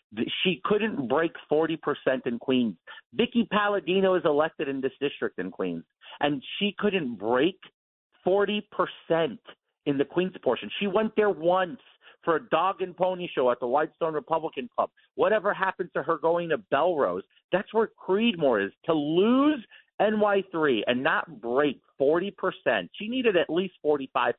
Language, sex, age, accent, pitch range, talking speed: English, male, 50-69, American, 135-200 Hz, 155 wpm